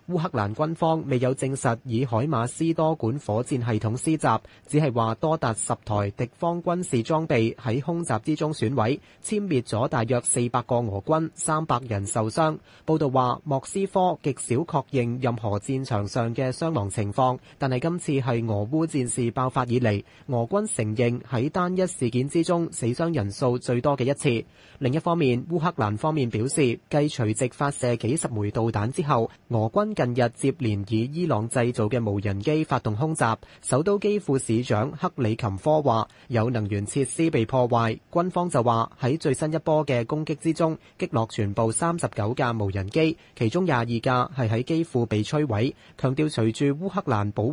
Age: 30-49